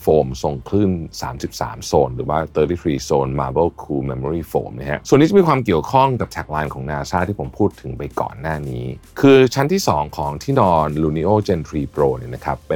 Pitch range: 70-100 Hz